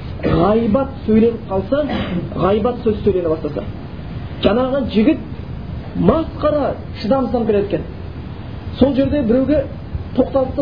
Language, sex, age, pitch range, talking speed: Bulgarian, male, 30-49, 185-250 Hz, 95 wpm